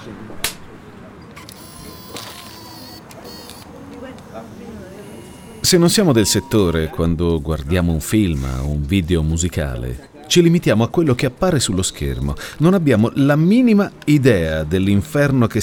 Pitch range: 90-145 Hz